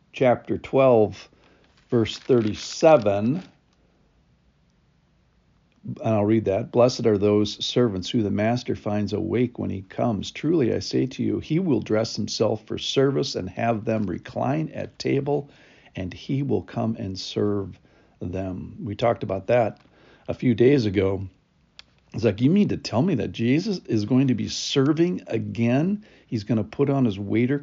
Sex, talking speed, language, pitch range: male, 160 wpm, English, 105-130 Hz